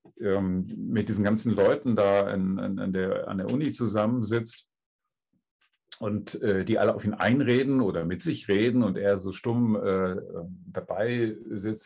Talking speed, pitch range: 135 wpm, 95-110 Hz